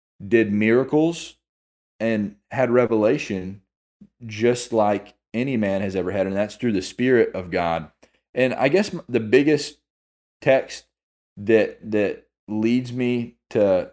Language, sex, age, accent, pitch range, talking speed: English, male, 20-39, American, 95-115 Hz, 130 wpm